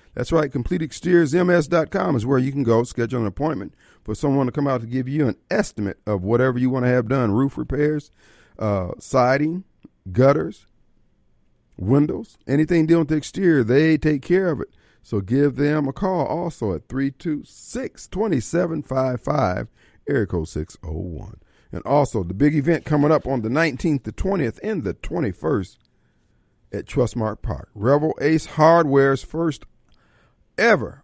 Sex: male